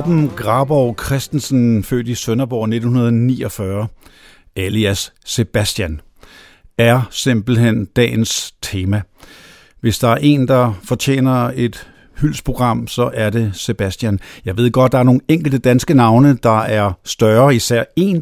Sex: male